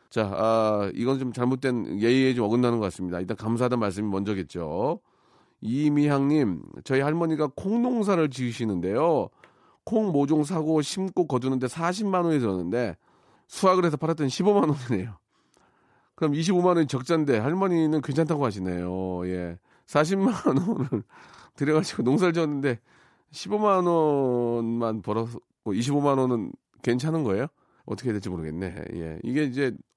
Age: 40-59